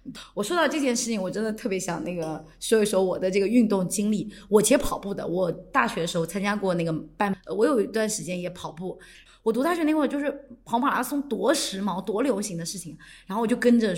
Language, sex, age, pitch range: Chinese, female, 20-39, 180-255 Hz